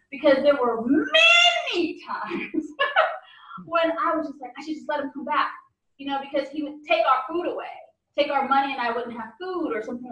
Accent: American